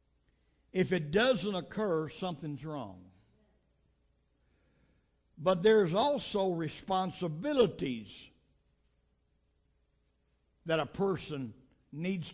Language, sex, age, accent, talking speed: English, male, 60-79, American, 70 wpm